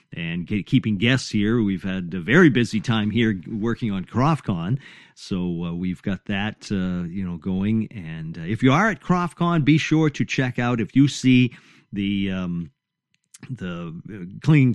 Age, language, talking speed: 50-69, English, 175 wpm